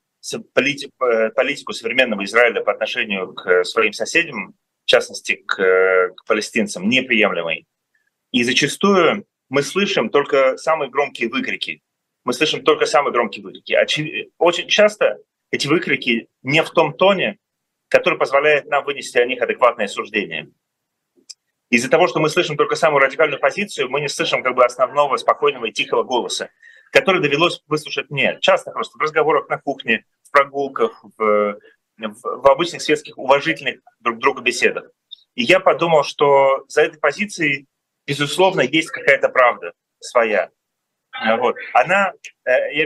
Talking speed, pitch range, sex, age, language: 140 wpm, 120-175 Hz, male, 30-49, Russian